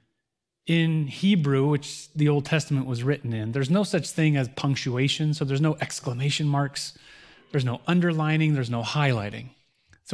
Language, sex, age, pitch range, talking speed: English, male, 30-49, 140-165 Hz, 160 wpm